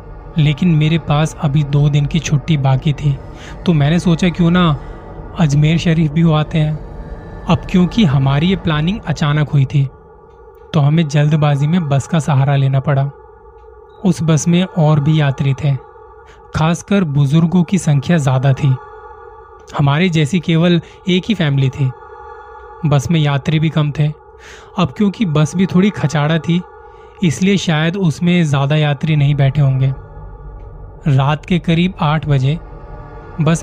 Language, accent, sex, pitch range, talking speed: Hindi, native, male, 145-180 Hz, 150 wpm